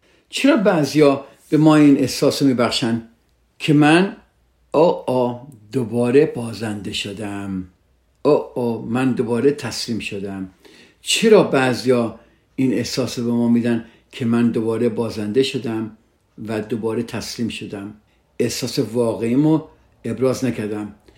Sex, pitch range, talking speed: male, 115-160 Hz, 110 wpm